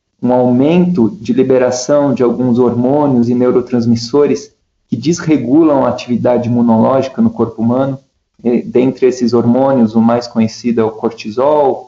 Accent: Brazilian